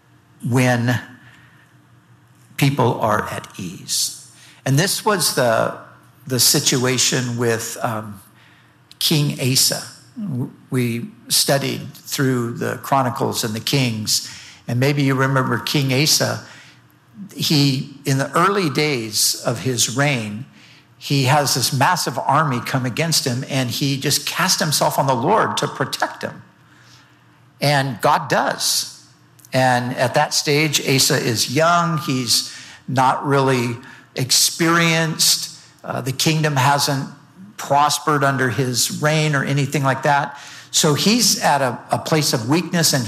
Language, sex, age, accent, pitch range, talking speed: English, male, 60-79, American, 130-155 Hz, 125 wpm